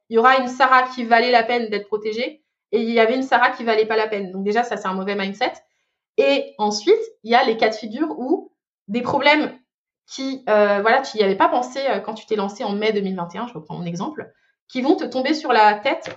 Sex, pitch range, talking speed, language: female, 220-285 Hz, 250 wpm, French